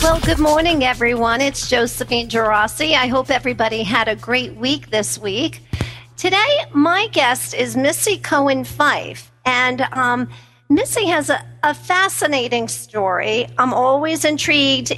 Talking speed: 135 wpm